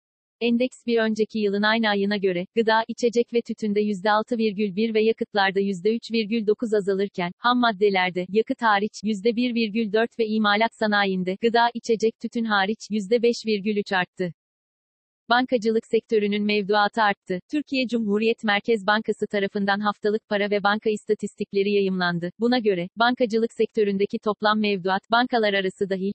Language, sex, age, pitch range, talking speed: Turkish, female, 40-59, 200-225 Hz, 125 wpm